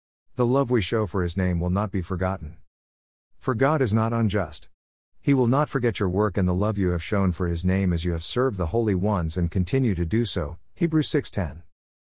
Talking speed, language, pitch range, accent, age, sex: 230 wpm, English, 85-115 Hz, American, 50-69, male